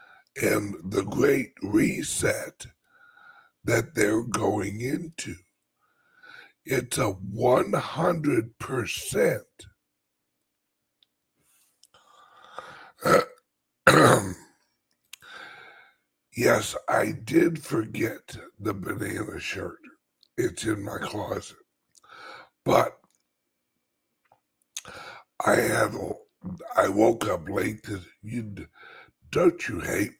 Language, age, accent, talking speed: English, 60-79, American, 70 wpm